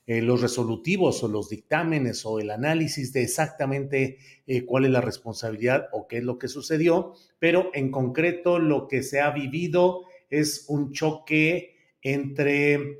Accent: Mexican